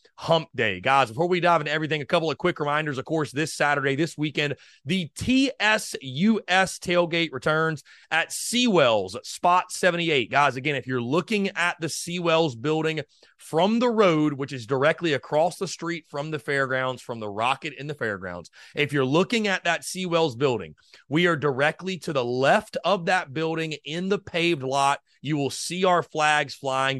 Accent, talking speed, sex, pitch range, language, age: American, 180 wpm, male, 135-175 Hz, English, 30-49